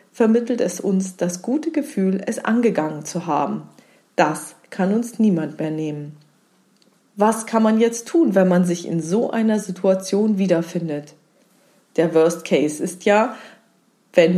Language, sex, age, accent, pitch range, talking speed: German, female, 40-59, German, 175-225 Hz, 145 wpm